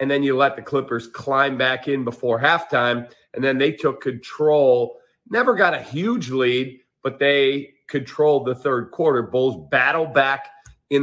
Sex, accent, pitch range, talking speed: male, American, 120-145 Hz, 170 wpm